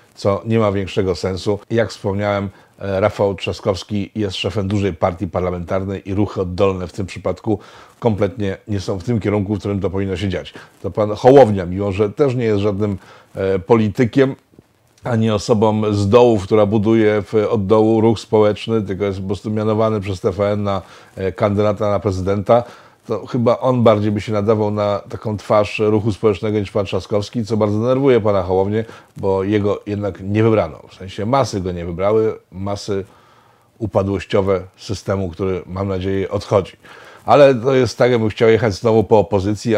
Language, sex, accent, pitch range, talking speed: Polish, male, native, 100-115 Hz, 170 wpm